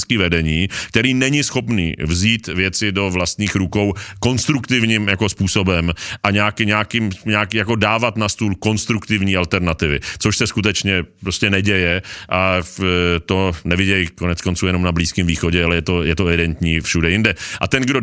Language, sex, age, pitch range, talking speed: Czech, male, 40-59, 95-120 Hz, 155 wpm